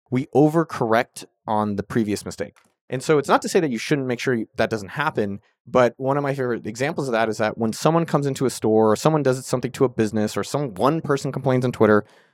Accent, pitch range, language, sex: American, 115-160 Hz, English, male